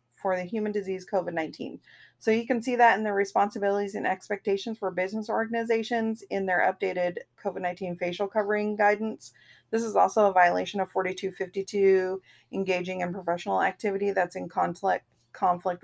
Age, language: 30-49, English